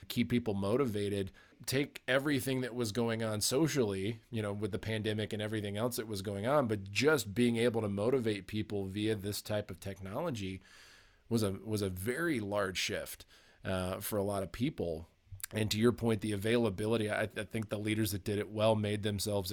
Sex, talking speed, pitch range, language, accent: male, 195 wpm, 105-125 Hz, English, American